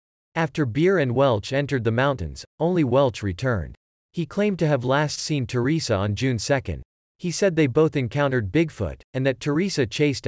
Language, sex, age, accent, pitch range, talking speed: English, male, 40-59, American, 110-150 Hz, 175 wpm